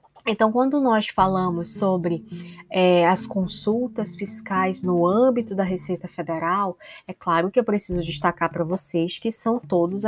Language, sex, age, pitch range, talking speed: Portuguese, female, 20-39, 175-225 Hz, 150 wpm